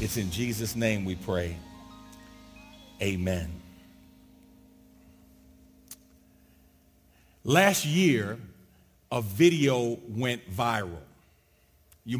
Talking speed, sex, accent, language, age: 70 wpm, male, American, English, 50-69